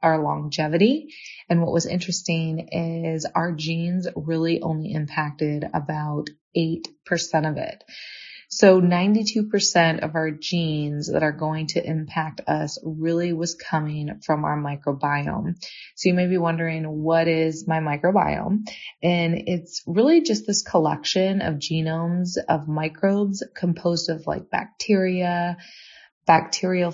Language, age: English, 20-39